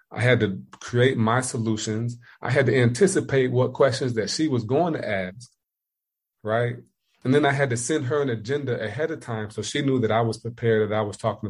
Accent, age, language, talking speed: American, 30-49, English, 220 wpm